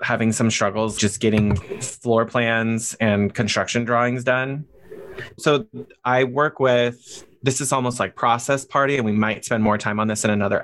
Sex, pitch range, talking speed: male, 110-135 Hz, 175 wpm